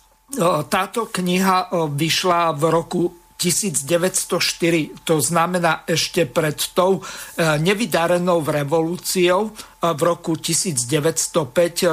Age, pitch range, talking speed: 50-69, 160-185 Hz, 80 wpm